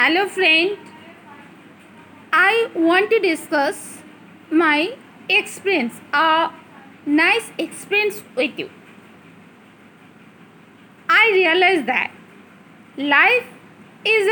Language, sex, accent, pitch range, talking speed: Hindi, female, native, 295-410 Hz, 75 wpm